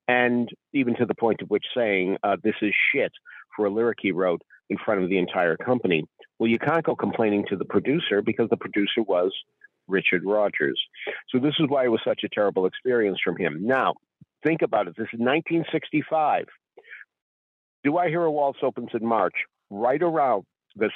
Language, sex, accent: English, male, American